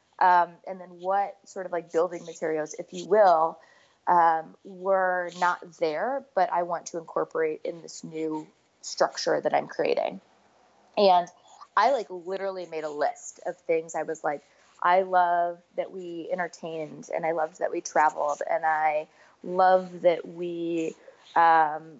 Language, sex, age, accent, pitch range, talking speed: English, female, 20-39, American, 165-195 Hz, 155 wpm